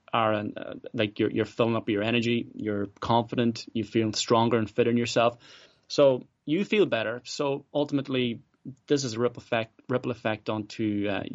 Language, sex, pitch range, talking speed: English, male, 105-125 Hz, 175 wpm